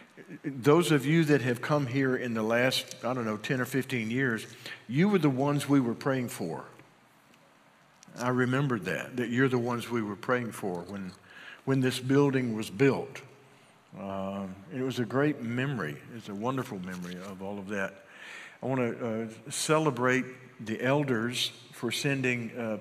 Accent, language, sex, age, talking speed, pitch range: American, English, male, 50-69, 175 wpm, 115-140 Hz